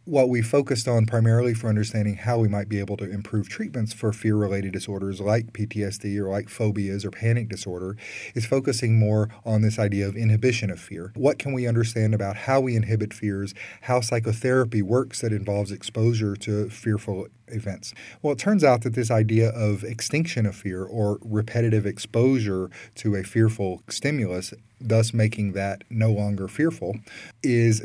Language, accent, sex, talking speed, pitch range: English, American, male, 170 wpm, 100-115 Hz